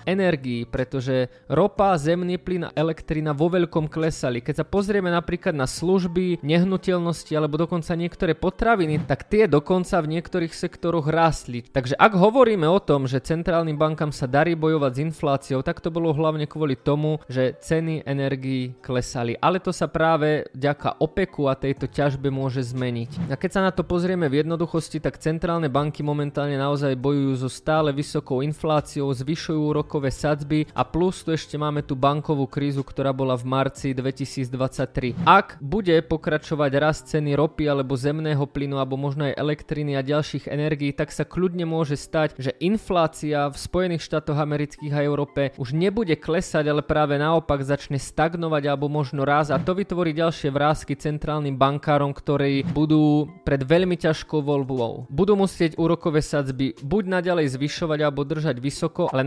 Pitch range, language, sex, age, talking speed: 140-165 Hz, French, male, 20-39, 160 wpm